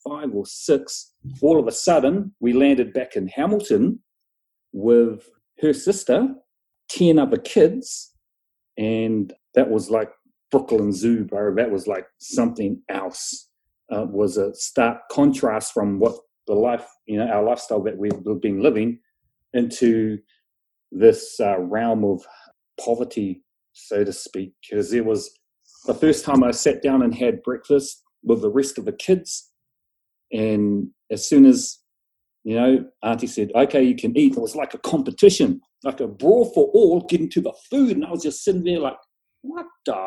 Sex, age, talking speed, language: male, 40-59, 165 wpm, English